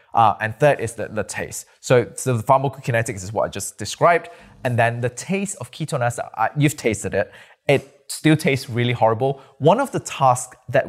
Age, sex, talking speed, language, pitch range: 20-39, male, 200 wpm, English, 110-135 Hz